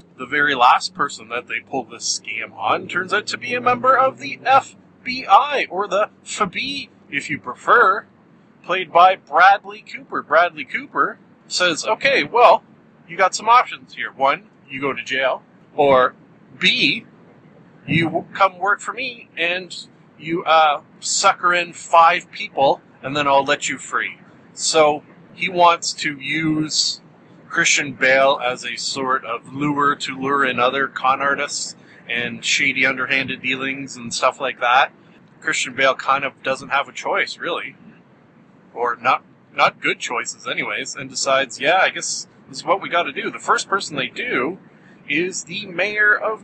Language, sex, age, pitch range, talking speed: English, male, 40-59, 140-200 Hz, 160 wpm